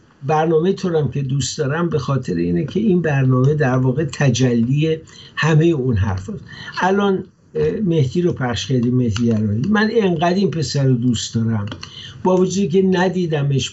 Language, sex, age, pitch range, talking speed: Persian, male, 60-79, 130-170 Hz, 140 wpm